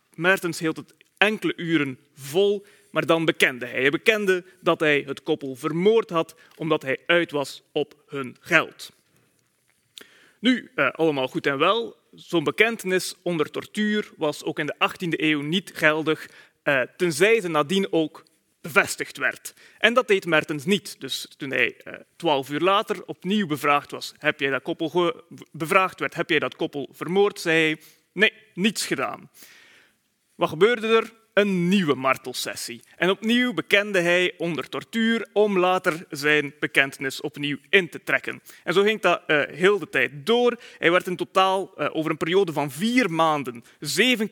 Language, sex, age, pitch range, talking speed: Dutch, male, 30-49, 150-200 Hz, 160 wpm